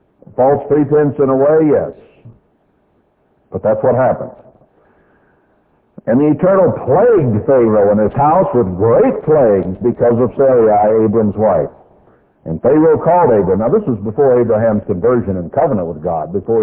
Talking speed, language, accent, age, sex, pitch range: 150 wpm, English, American, 60-79, male, 110-150 Hz